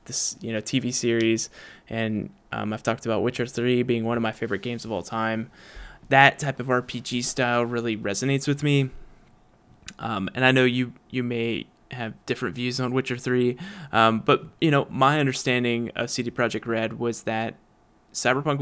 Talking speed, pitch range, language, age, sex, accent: 180 wpm, 115-135 Hz, English, 20-39, male, American